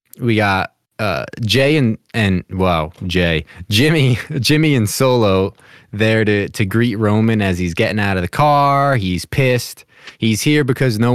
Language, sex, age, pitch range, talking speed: English, male, 20-39, 90-125 Hz, 160 wpm